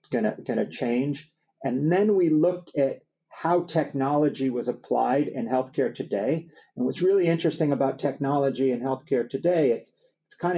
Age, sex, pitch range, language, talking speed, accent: 50-69, male, 130-170 Hz, English, 155 wpm, American